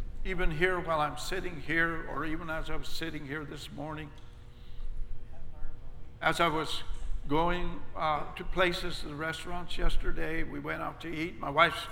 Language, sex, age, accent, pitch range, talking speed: English, male, 60-79, American, 150-185 Hz, 160 wpm